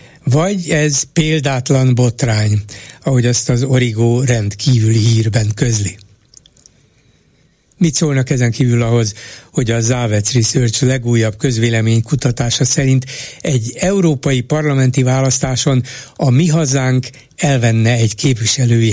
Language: Hungarian